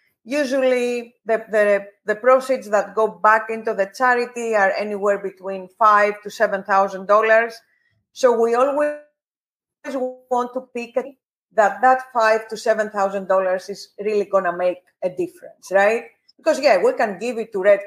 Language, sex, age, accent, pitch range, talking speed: English, female, 30-49, Spanish, 200-250 Hz, 160 wpm